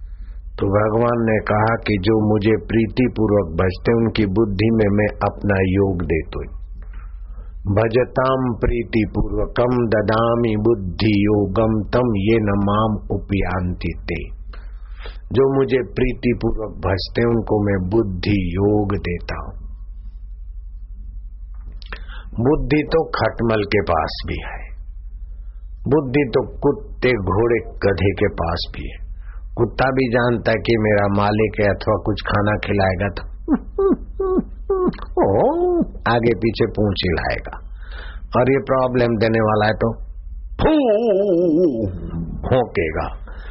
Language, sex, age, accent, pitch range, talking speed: Hindi, male, 50-69, native, 90-120 Hz, 105 wpm